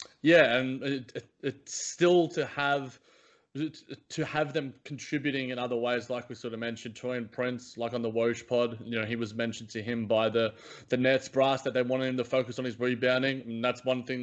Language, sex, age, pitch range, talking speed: English, male, 20-39, 120-140 Hz, 225 wpm